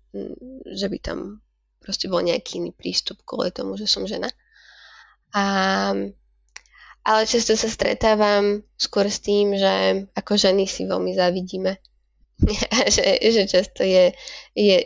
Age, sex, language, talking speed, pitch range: 10-29, female, Slovak, 130 wpm, 185-210 Hz